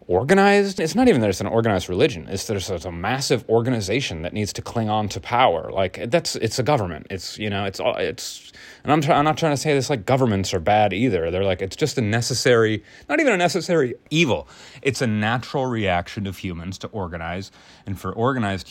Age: 30-49